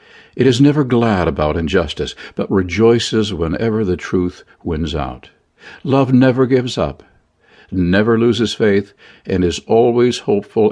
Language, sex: English, male